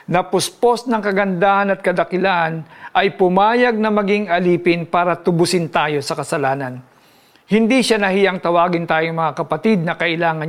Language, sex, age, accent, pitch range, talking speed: Filipino, male, 50-69, native, 155-195 Hz, 145 wpm